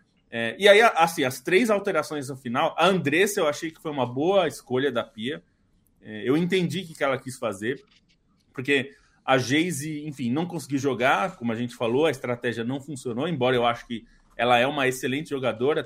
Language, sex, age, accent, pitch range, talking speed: Portuguese, male, 20-39, Brazilian, 125-170 Hz, 190 wpm